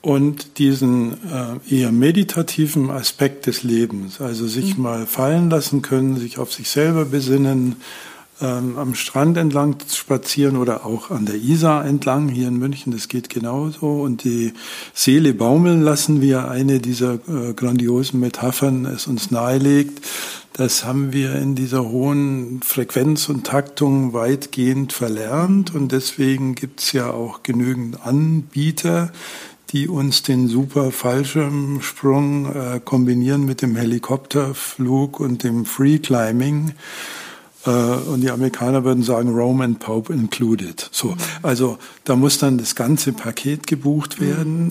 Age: 50-69